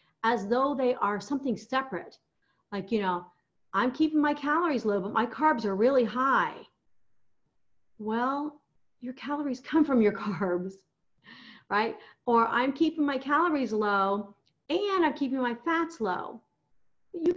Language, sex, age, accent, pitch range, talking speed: English, female, 40-59, American, 210-290 Hz, 140 wpm